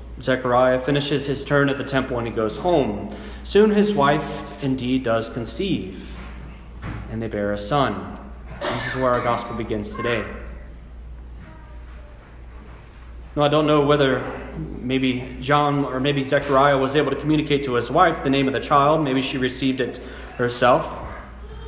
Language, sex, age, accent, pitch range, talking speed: English, male, 30-49, American, 120-155 Hz, 155 wpm